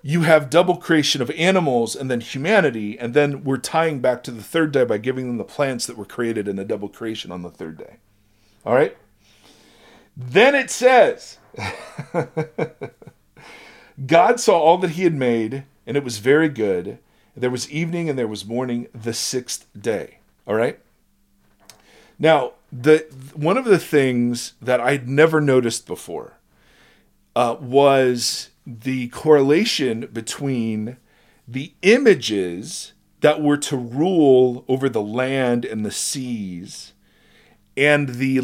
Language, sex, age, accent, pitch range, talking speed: English, male, 40-59, American, 120-155 Hz, 145 wpm